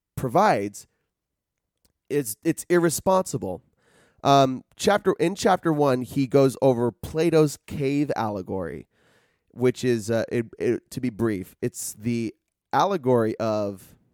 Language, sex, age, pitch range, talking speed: English, male, 30-49, 115-150 Hz, 115 wpm